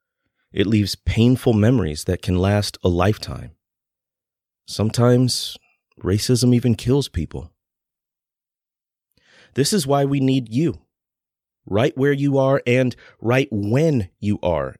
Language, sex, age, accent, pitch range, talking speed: English, male, 30-49, American, 100-135 Hz, 120 wpm